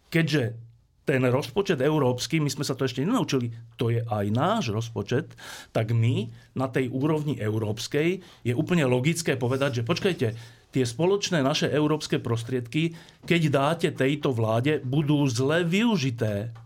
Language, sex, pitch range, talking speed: Slovak, male, 120-150 Hz, 140 wpm